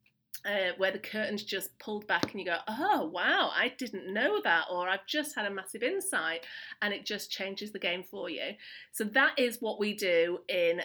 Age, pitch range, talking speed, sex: 30-49, 180-245 Hz, 210 wpm, female